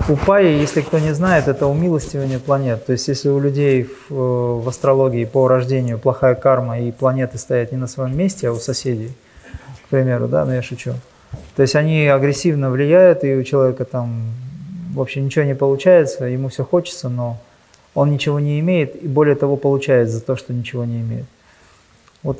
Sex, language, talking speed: male, Russian, 180 wpm